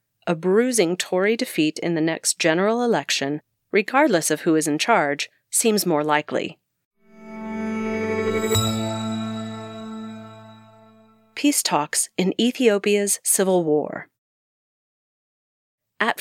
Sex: female